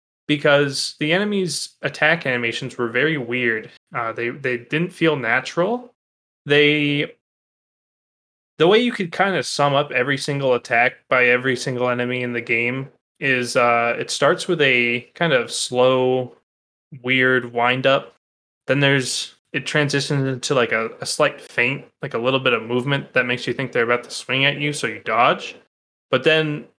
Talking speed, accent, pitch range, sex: 170 wpm, American, 120-145 Hz, male